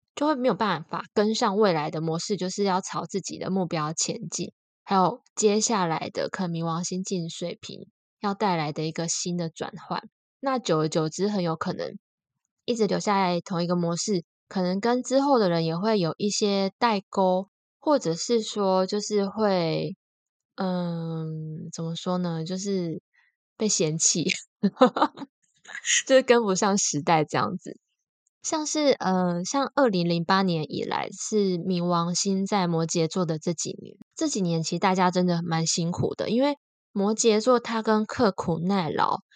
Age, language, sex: 10-29, Chinese, female